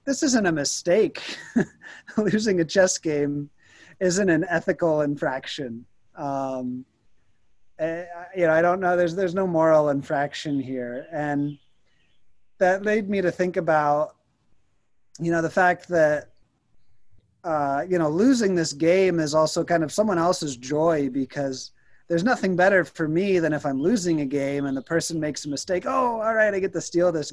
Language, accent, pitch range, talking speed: English, American, 140-175 Hz, 165 wpm